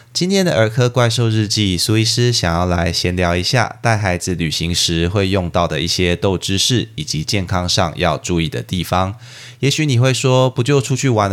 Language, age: Chinese, 20-39